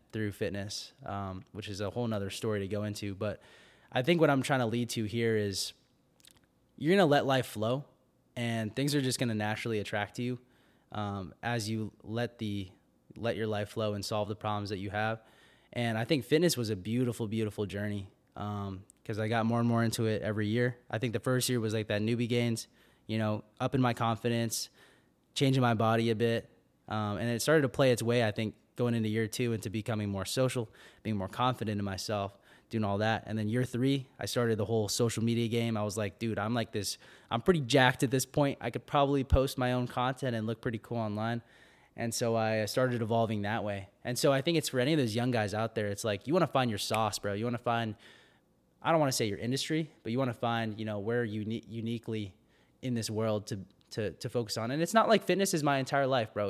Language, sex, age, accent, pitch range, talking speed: English, male, 20-39, American, 105-125 Hz, 240 wpm